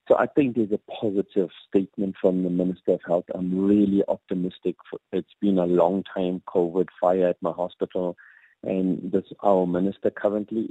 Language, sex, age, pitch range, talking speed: English, male, 50-69, 95-120 Hz, 160 wpm